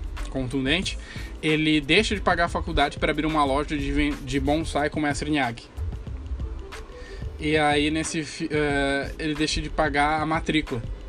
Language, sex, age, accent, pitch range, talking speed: Portuguese, male, 10-29, Brazilian, 130-155 Hz, 150 wpm